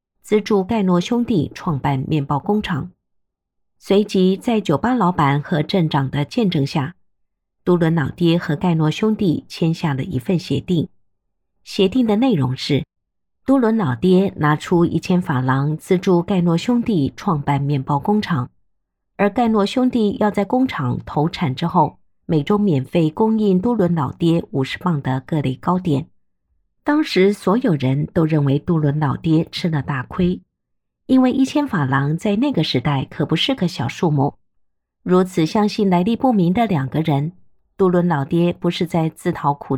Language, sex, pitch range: Chinese, female, 150-205 Hz